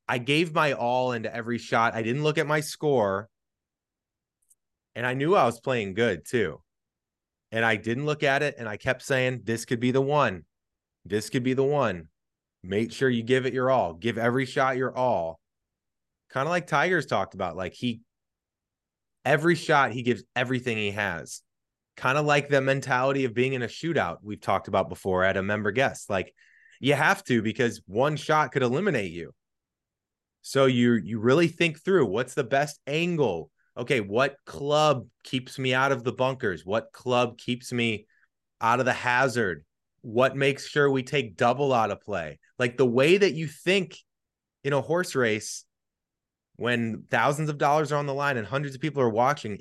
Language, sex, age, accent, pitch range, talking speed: English, male, 20-39, American, 110-140 Hz, 190 wpm